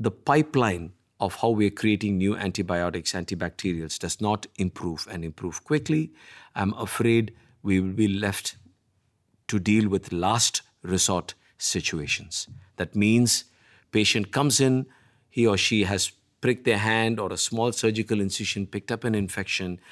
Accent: Indian